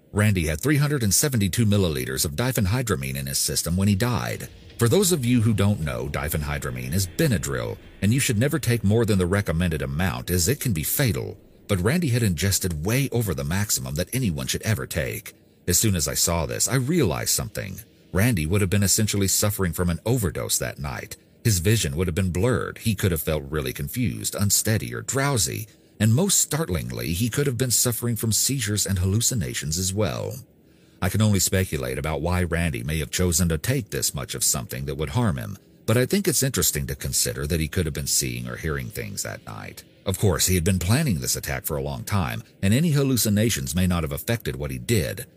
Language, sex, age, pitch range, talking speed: English, male, 40-59, 85-120 Hz, 210 wpm